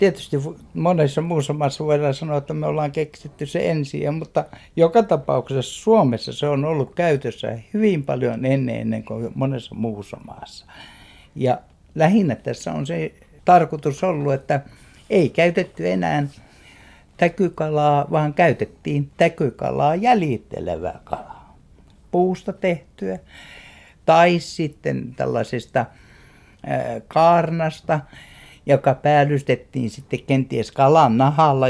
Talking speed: 105 wpm